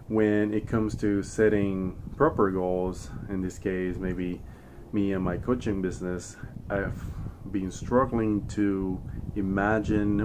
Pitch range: 90-110 Hz